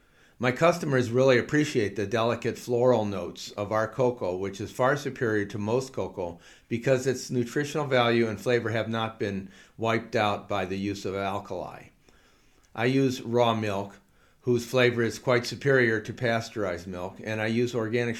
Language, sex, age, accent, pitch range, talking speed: English, male, 50-69, American, 105-130 Hz, 165 wpm